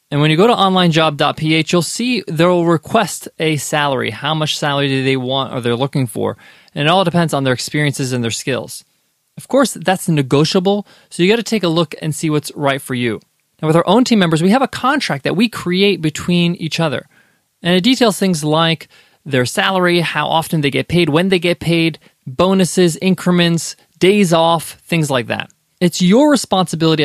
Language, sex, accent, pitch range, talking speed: English, male, American, 145-190 Hz, 200 wpm